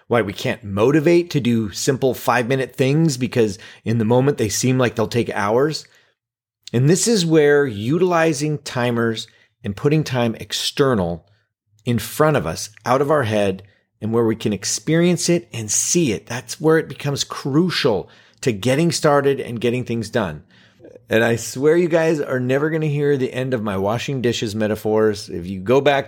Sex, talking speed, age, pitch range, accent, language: male, 180 wpm, 30-49, 110-140 Hz, American, English